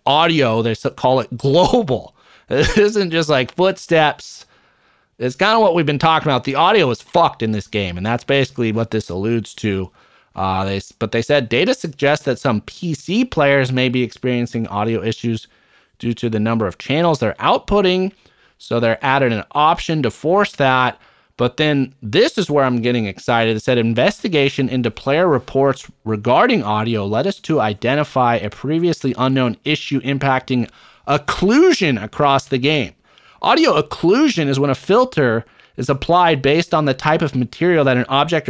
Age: 30-49